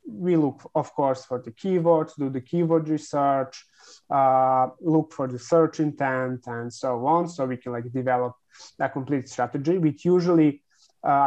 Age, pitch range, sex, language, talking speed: 30-49, 130-160 Hz, male, English, 165 wpm